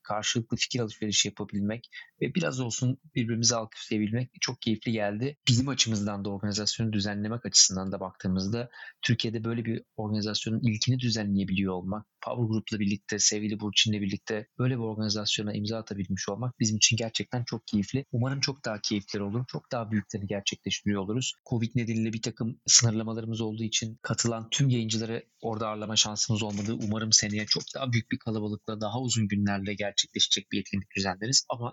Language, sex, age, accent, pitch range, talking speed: Turkish, male, 30-49, native, 105-120 Hz, 155 wpm